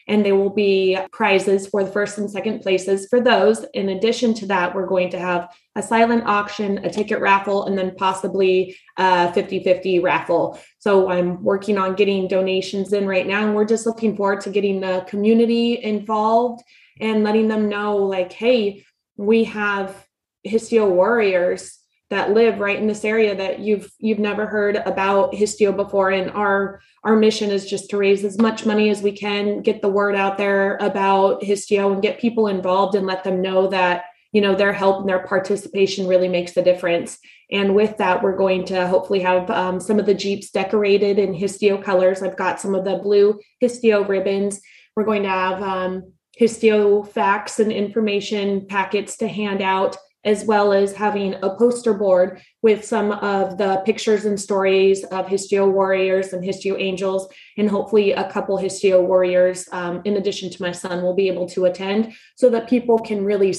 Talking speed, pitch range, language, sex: 185 wpm, 190-210 Hz, English, female